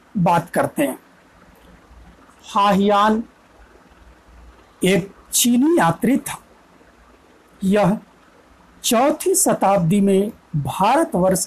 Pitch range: 185-225 Hz